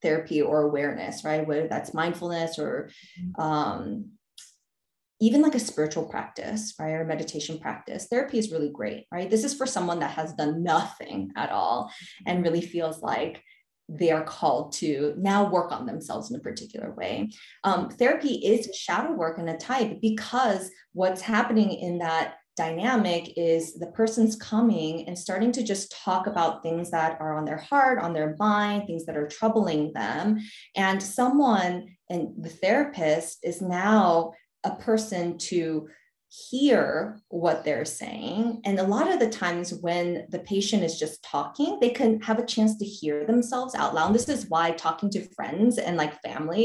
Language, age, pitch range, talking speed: English, 20-39, 160-225 Hz, 175 wpm